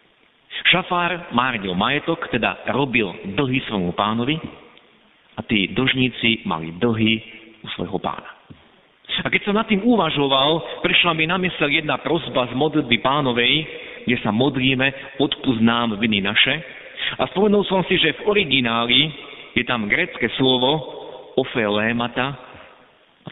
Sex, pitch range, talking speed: male, 120-165 Hz, 130 wpm